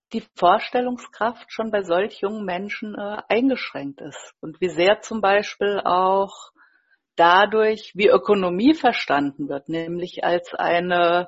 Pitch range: 185-250 Hz